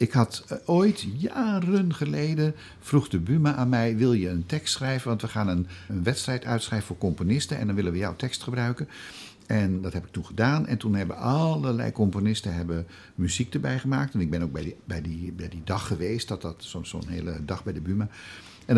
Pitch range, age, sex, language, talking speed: 90-125 Hz, 60-79, male, Dutch, 220 wpm